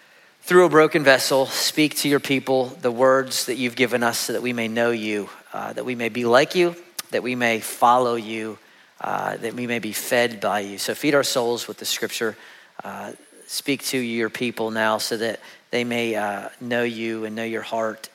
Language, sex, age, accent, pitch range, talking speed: English, male, 40-59, American, 120-170 Hz, 210 wpm